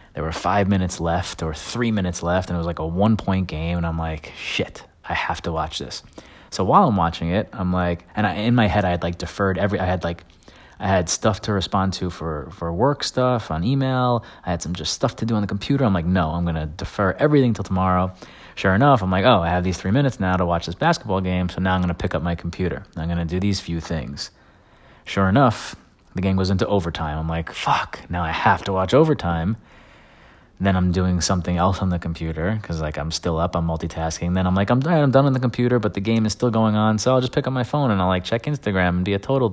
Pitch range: 85-110 Hz